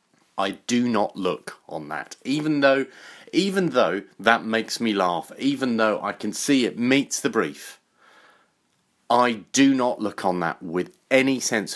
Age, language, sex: 40-59, English, male